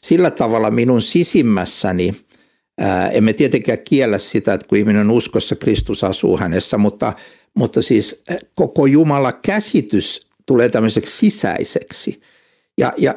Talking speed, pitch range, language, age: 125 wpm, 110-170 Hz, Finnish, 60-79